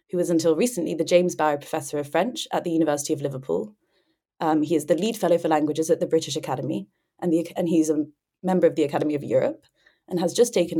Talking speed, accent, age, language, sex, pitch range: 235 wpm, British, 20-39, English, female, 160-185 Hz